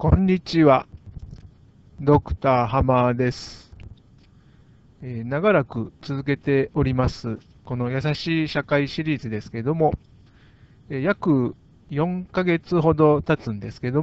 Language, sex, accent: Japanese, male, native